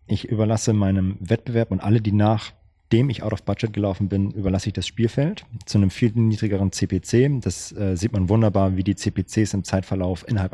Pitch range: 95-115 Hz